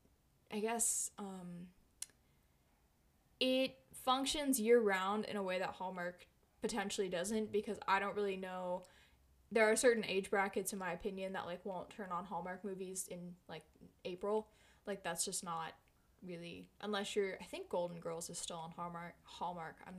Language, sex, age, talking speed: English, female, 10-29, 160 wpm